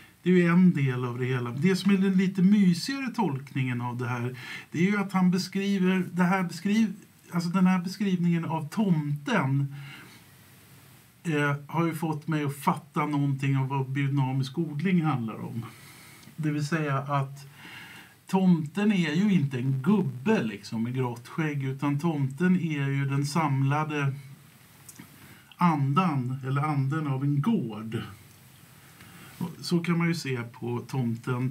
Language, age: Swedish, 50-69